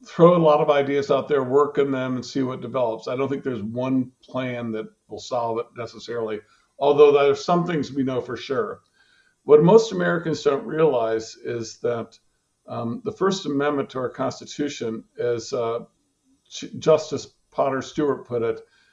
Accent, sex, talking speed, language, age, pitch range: American, male, 170 wpm, English, 50-69, 130-170 Hz